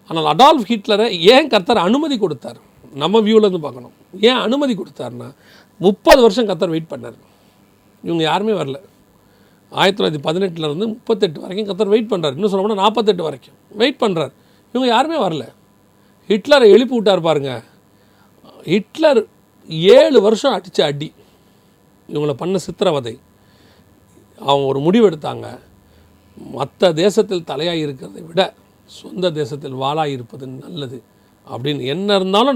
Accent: native